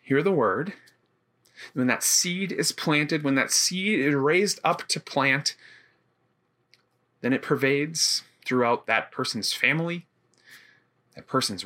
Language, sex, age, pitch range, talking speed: English, male, 30-49, 110-165 Hz, 130 wpm